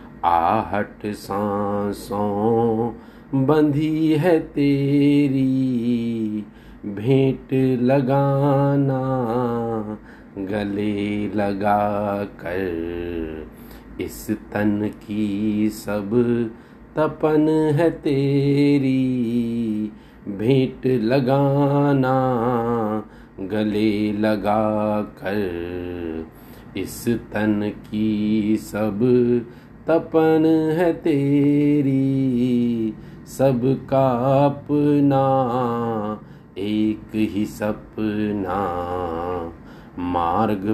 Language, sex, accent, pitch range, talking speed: Hindi, male, native, 105-135 Hz, 50 wpm